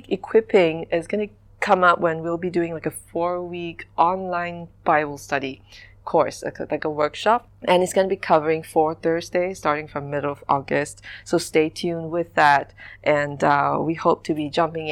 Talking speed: 185 wpm